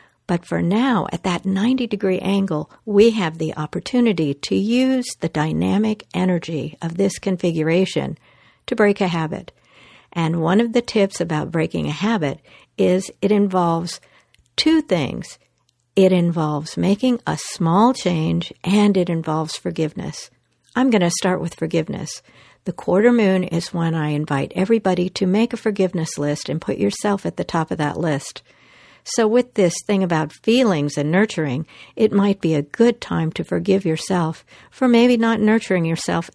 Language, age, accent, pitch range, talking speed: English, 60-79, American, 160-215 Hz, 160 wpm